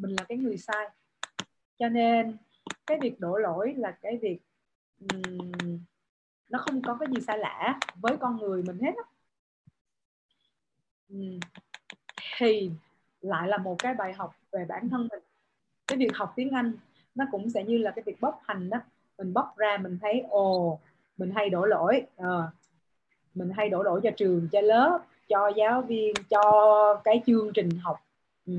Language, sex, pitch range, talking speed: Vietnamese, female, 180-235 Hz, 160 wpm